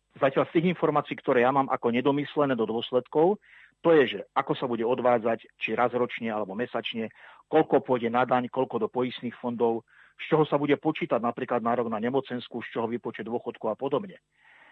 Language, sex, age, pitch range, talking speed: Slovak, male, 40-59, 120-145 Hz, 190 wpm